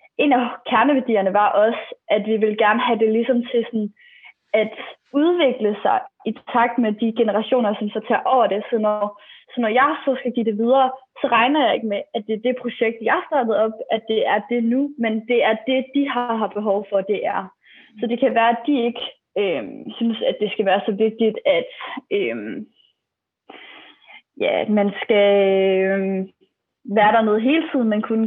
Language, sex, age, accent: Danish, female, 20-39, native